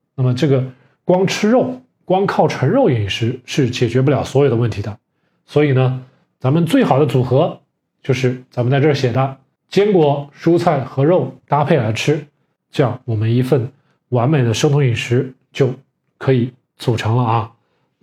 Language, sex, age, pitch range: Chinese, male, 20-39, 125-160 Hz